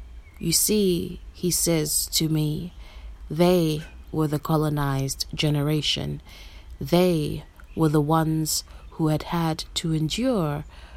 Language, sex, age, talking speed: English, female, 30-49, 110 wpm